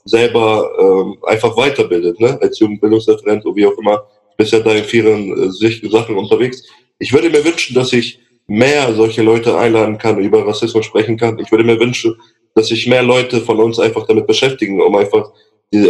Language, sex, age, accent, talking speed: German, male, 20-39, German, 195 wpm